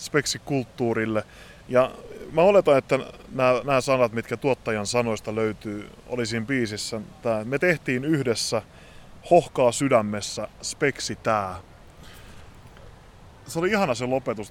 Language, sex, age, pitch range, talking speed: Finnish, male, 20-39, 110-135 Hz, 110 wpm